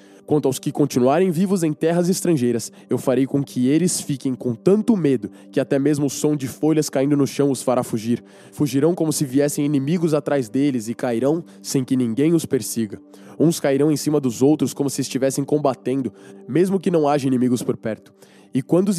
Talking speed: 200 wpm